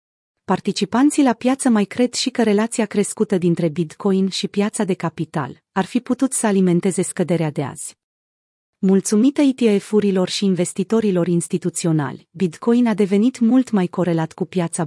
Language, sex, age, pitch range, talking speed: Romanian, female, 30-49, 175-225 Hz, 145 wpm